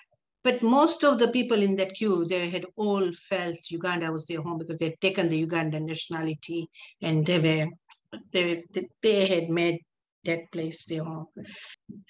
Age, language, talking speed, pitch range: 50-69, English, 170 wpm, 165-200 Hz